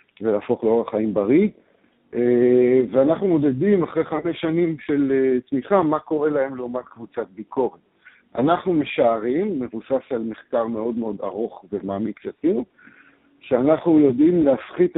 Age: 60-79